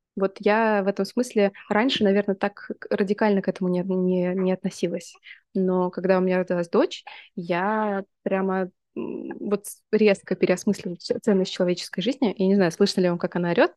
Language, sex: Russian, female